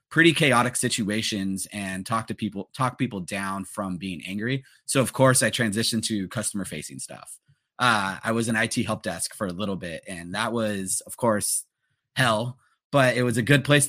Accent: American